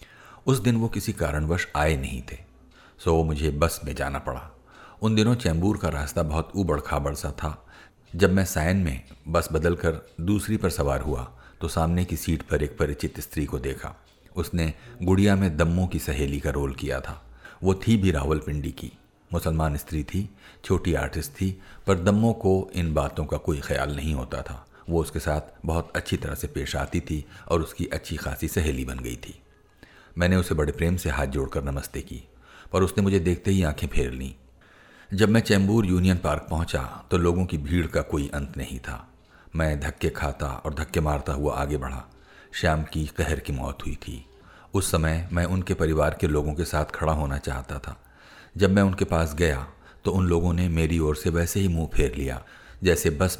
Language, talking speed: Hindi, 200 wpm